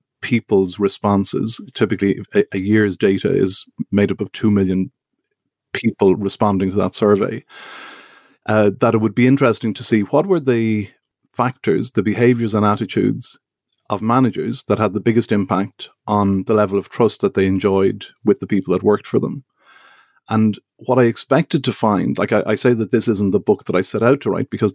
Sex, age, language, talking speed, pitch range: male, 50-69, English, 185 wpm, 100-115 Hz